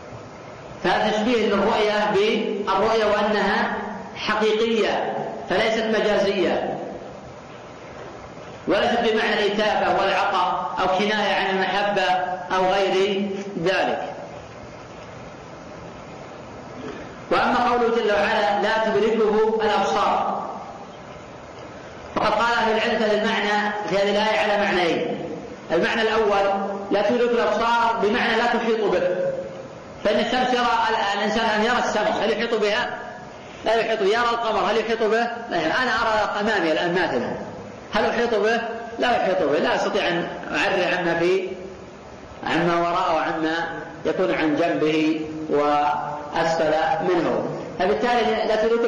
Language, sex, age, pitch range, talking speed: Arabic, female, 40-59, 190-225 Hz, 105 wpm